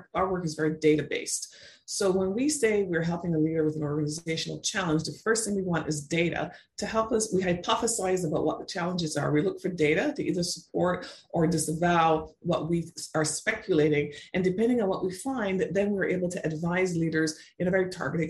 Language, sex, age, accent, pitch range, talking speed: English, female, 30-49, American, 160-195 Hz, 205 wpm